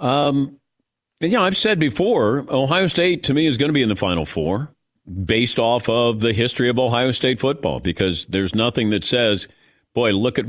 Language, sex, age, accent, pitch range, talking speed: English, male, 50-69, American, 105-150 Hz, 195 wpm